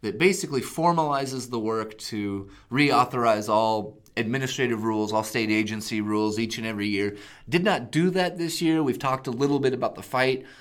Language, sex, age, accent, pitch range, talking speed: English, male, 30-49, American, 110-140 Hz, 180 wpm